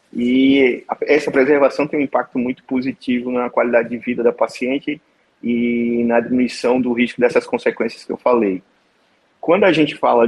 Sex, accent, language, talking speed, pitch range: male, Brazilian, Portuguese, 165 wpm, 115-130 Hz